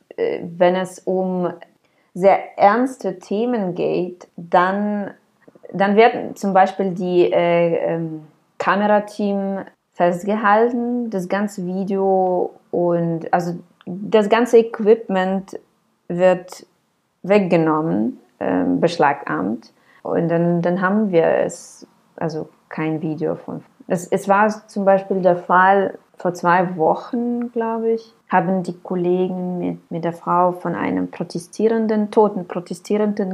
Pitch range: 160-200 Hz